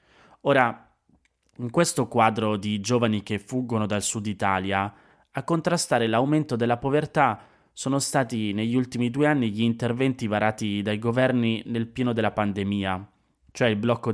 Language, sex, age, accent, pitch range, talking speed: Italian, male, 20-39, native, 105-130 Hz, 145 wpm